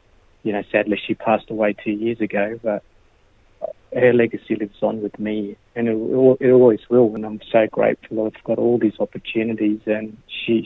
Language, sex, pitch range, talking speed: English, male, 105-115 Hz, 180 wpm